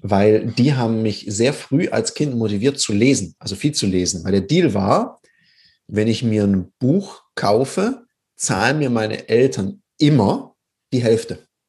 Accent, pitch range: German, 105-140 Hz